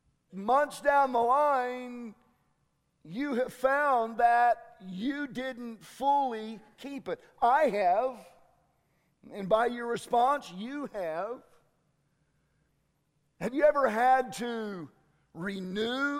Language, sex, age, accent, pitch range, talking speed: English, male, 50-69, American, 200-275 Hz, 100 wpm